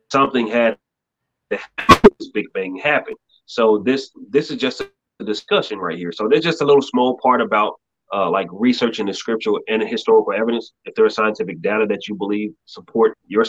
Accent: American